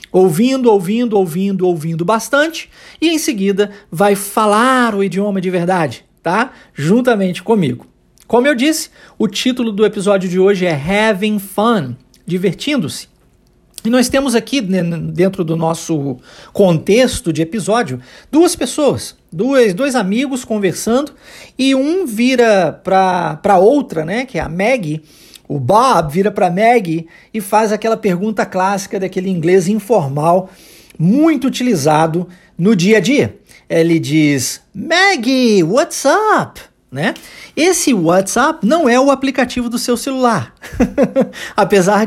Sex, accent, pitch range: male, Brazilian, 180-255 Hz